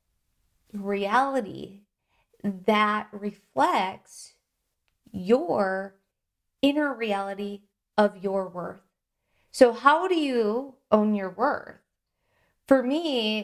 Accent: American